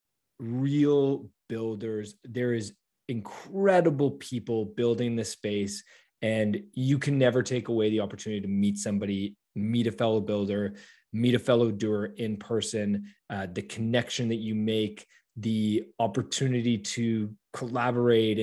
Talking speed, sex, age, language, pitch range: 130 wpm, male, 20-39, English, 105-120 Hz